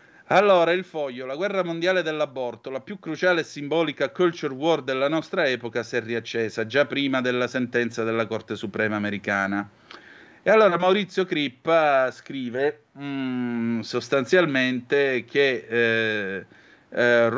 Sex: male